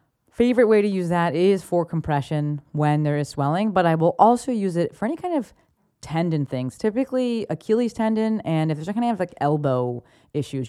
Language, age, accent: English, 30-49, American